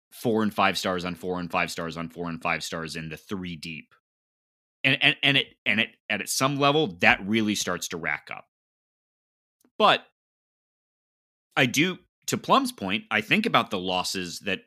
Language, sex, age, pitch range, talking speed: English, male, 30-49, 85-110 Hz, 190 wpm